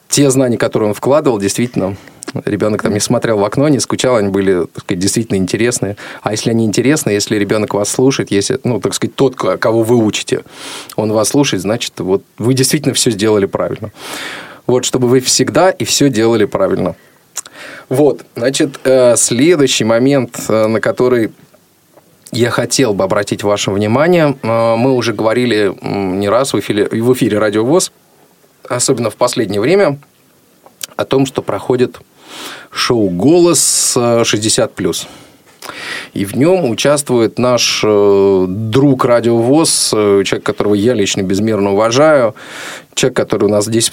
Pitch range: 105-130 Hz